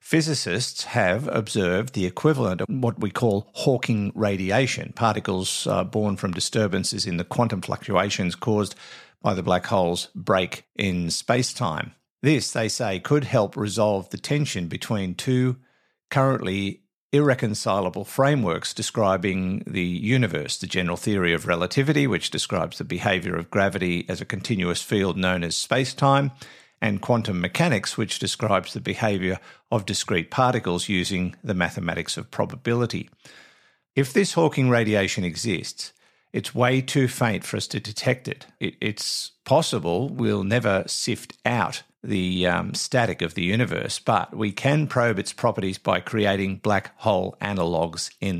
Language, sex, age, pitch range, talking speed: English, male, 50-69, 95-125 Hz, 145 wpm